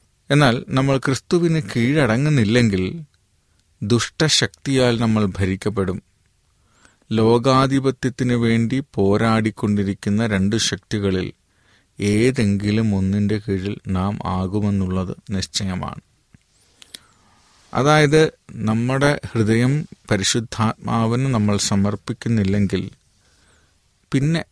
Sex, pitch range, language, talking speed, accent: male, 95-120 Hz, Malayalam, 60 wpm, native